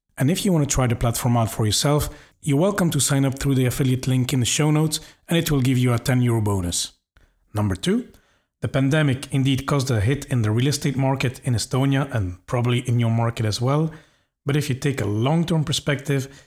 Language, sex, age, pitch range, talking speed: English, male, 40-59, 120-145 Hz, 225 wpm